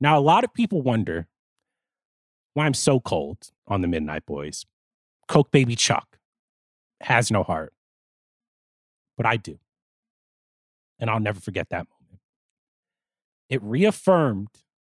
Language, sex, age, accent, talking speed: English, male, 30-49, American, 125 wpm